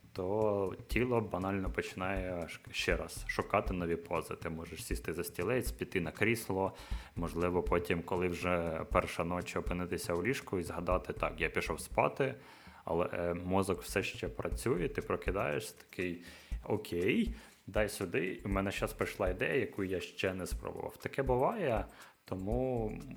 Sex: male